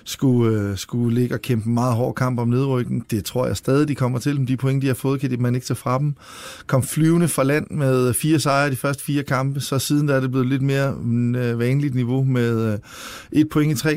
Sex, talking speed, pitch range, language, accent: male, 240 wpm, 120-140 Hz, Danish, native